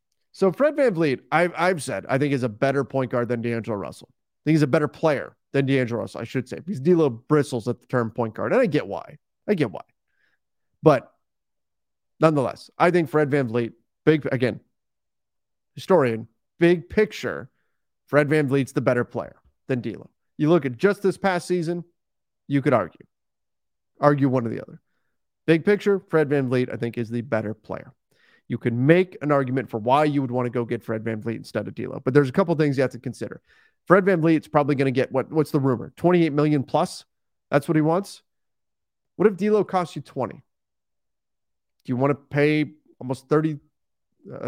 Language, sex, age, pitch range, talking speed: English, male, 30-49, 125-165 Hz, 200 wpm